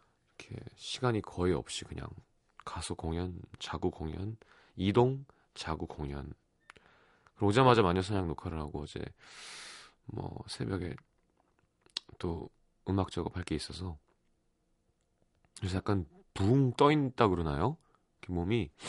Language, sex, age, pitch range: Korean, male, 30-49, 85-120 Hz